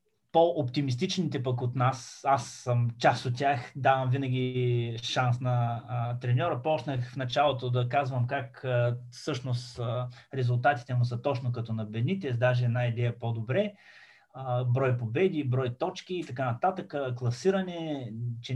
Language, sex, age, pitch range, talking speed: Bulgarian, male, 20-39, 125-140 Hz, 150 wpm